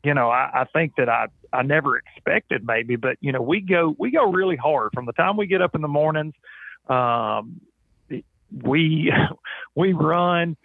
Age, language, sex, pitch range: 40-59, English, male, 130-160 Hz